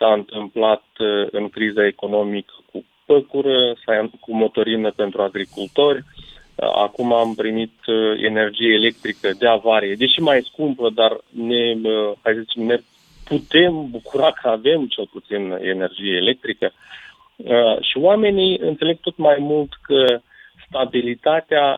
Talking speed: 115 wpm